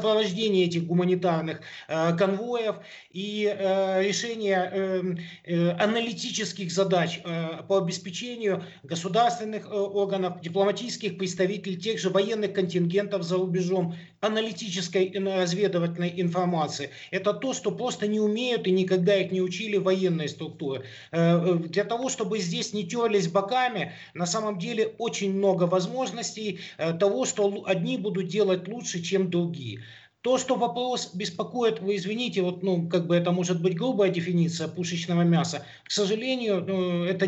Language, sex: Ukrainian, male